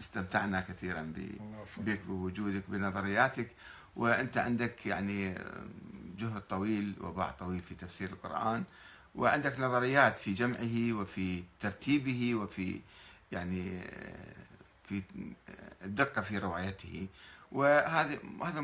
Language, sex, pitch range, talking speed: Arabic, male, 100-145 Hz, 95 wpm